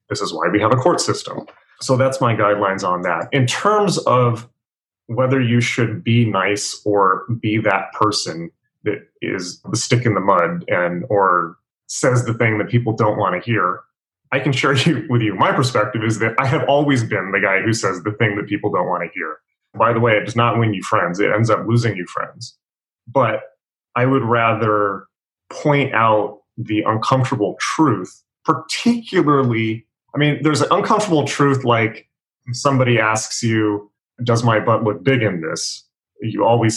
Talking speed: 185 wpm